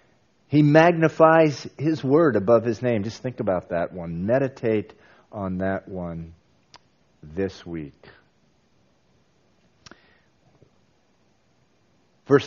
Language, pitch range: English, 95-135 Hz